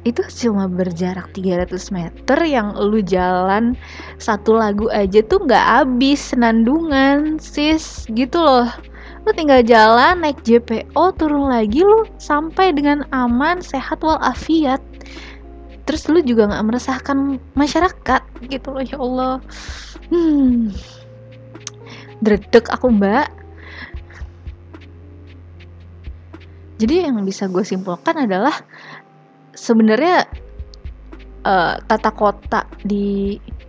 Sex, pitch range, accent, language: female, 195-270 Hz, native, Indonesian